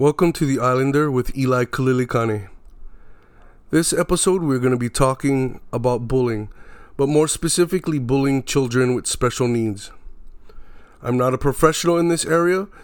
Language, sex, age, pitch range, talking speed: English, male, 30-49, 120-150 Hz, 145 wpm